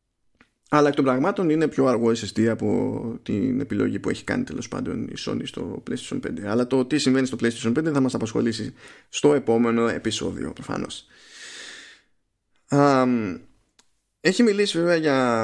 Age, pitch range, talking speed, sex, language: 20-39, 110-140 Hz, 150 wpm, male, Greek